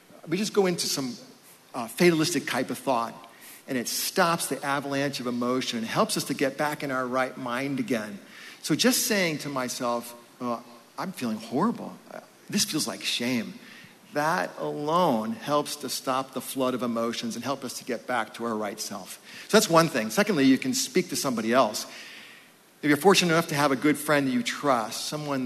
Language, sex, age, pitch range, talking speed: English, male, 40-59, 125-155 Hz, 200 wpm